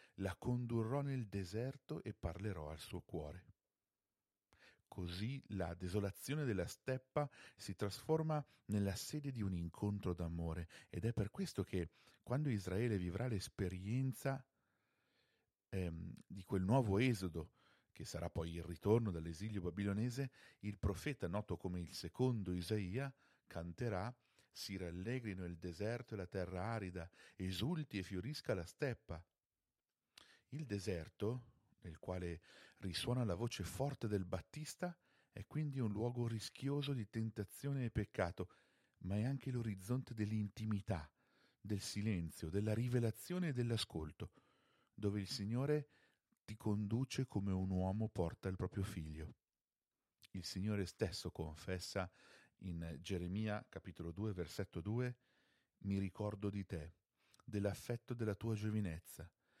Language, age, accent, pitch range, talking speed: Italian, 50-69, native, 90-120 Hz, 125 wpm